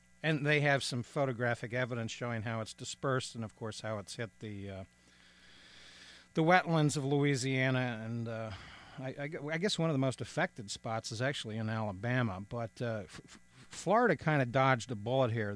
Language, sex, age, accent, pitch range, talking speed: English, male, 50-69, American, 105-135 Hz, 190 wpm